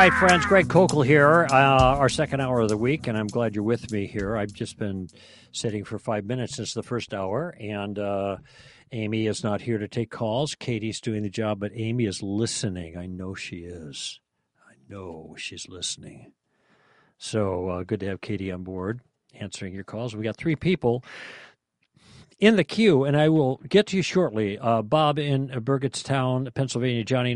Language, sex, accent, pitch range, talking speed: English, male, American, 110-140 Hz, 195 wpm